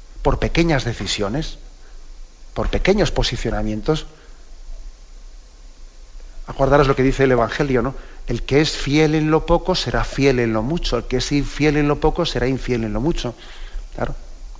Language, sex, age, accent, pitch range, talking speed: Spanish, male, 40-59, Spanish, 115-155 Hz, 155 wpm